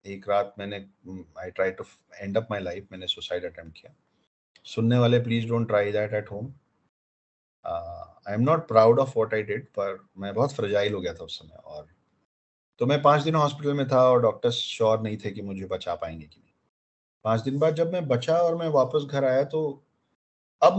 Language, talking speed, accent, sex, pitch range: Hindi, 190 wpm, native, male, 110-155 Hz